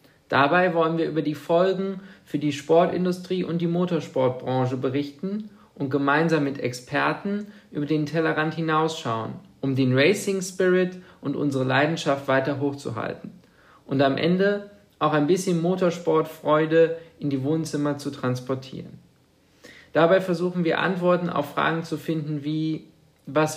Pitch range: 140-170 Hz